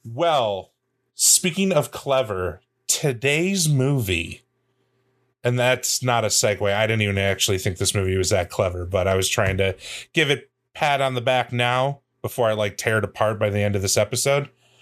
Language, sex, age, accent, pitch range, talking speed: English, male, 30-49, American, 110-135 Hz, 180 wpm